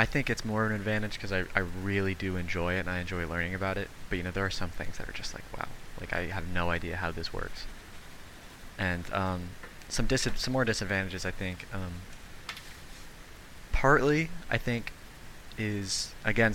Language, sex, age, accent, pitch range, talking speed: English, male, 20-39, American, 90-105 Hz, 200 wpm